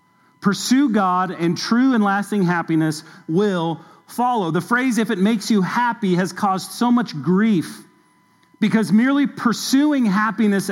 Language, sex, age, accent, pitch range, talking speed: English, male, 40-59, American, 185-235 Hz, 140 wpm